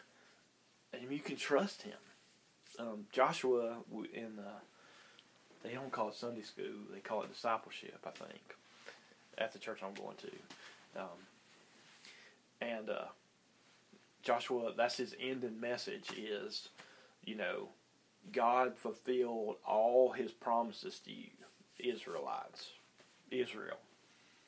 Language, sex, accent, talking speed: English, male, American, 120 wpm